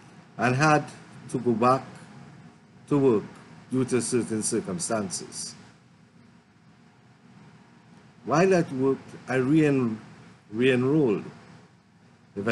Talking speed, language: 80 wpm, English